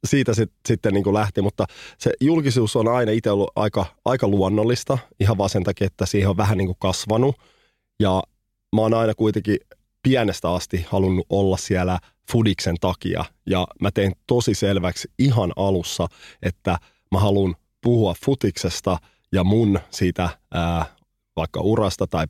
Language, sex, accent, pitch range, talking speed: Finnish, male, native, 95-110 Hz, 150 wpm